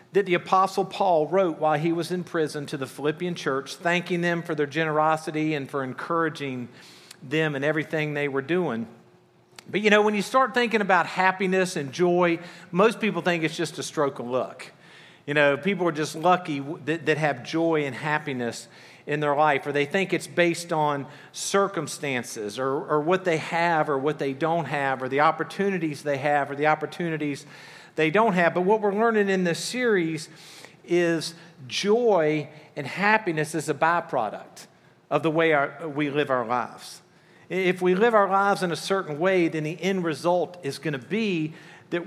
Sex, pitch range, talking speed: male, 150-185 Hz, 185 wpm